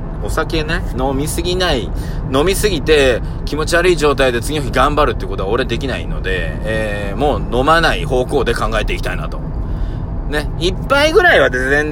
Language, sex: Japanese, male